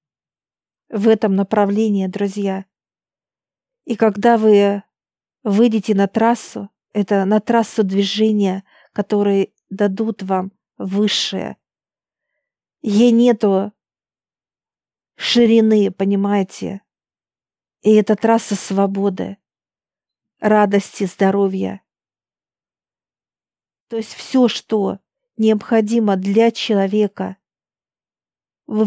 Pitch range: 200-230 Hz